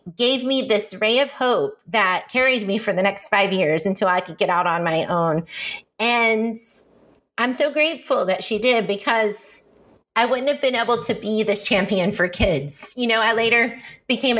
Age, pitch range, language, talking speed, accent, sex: 30-49, 200-250 Hz, English, 190 wpm, American, female